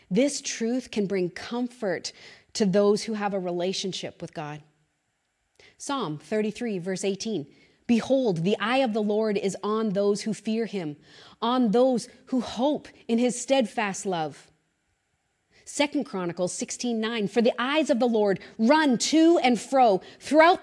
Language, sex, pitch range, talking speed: English, female, 185-245 Hz, 150 wpm